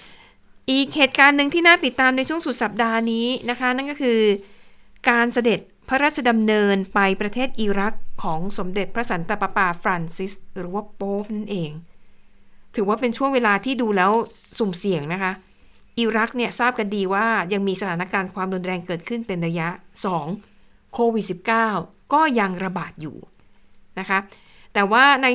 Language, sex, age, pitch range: Thai, female, 60-79, 195-235 Hz